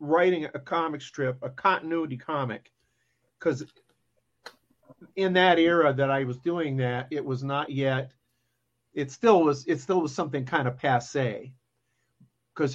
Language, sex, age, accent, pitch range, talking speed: English, male, 50-69, American, 130-165 Hz, 145 wpm